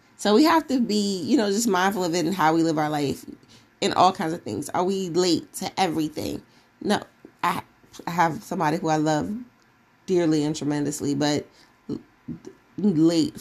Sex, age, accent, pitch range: female, 30-49, American, 160-230 Hz